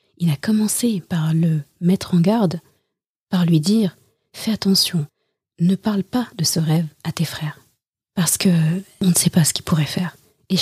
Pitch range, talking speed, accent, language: 165-195 Hz, 200 wpm, French, French